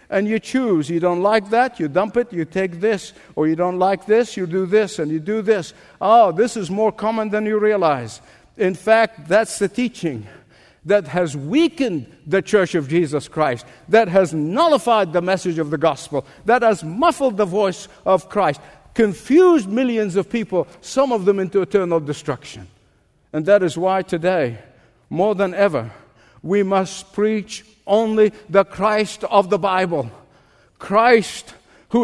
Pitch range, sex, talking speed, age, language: 180-225 Hz, male, 170 wpm, 50-69, English